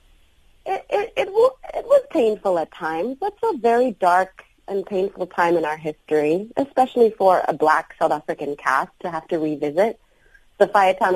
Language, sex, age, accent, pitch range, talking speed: English, female, 30-49, American, 150-190 Hz, 165 wpm